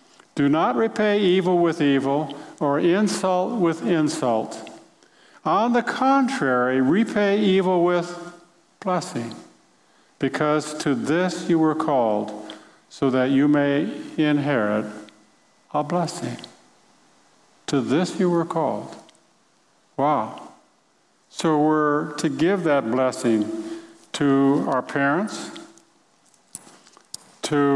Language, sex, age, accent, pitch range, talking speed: English, male, 50-69, American, 125-160 Hz, 100 wpm